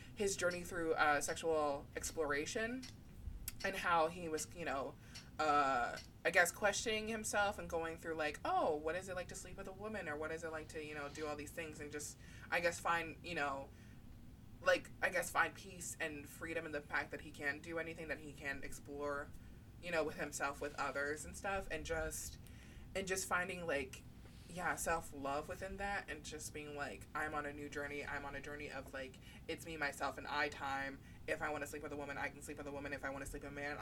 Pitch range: 140-170 Hz